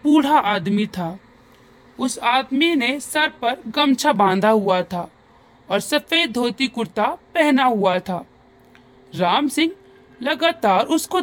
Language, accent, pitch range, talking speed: Hindi, native, 200-310 Hz, 125 wpm